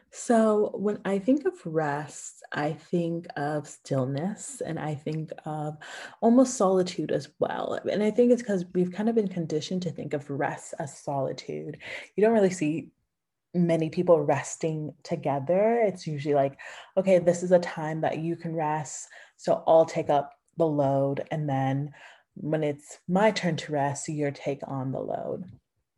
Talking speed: 170 wpm